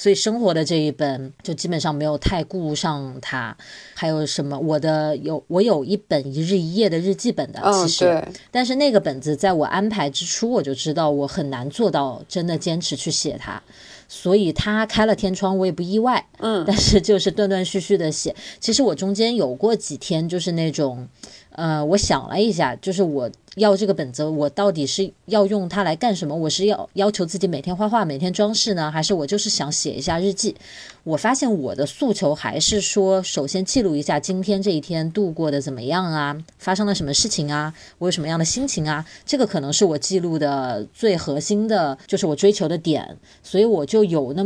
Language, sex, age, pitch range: Chinese, female, 20-39, 150-200 Hz